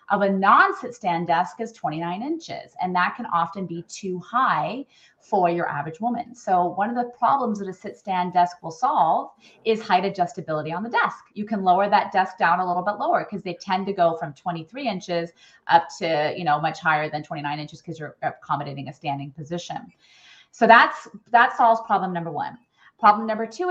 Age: 30-49